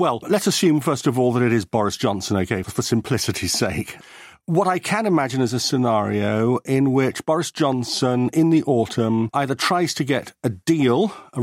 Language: English